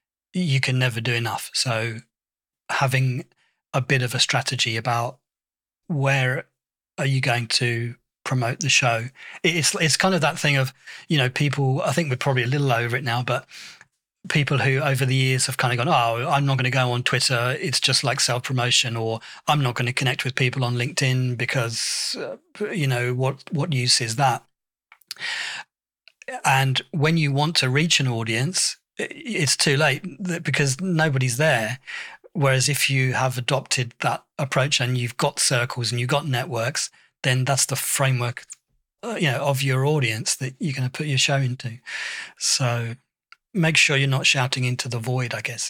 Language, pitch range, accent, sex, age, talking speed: English, 125-145 Hz, British, male, 30-49, 180 wpm